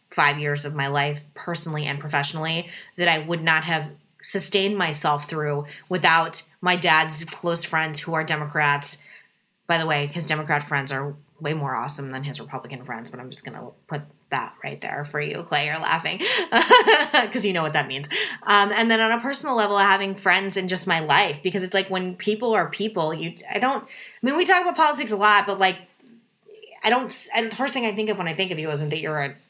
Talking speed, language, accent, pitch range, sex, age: 225 wpm, English, American, 150-195 Hz, female, 20-39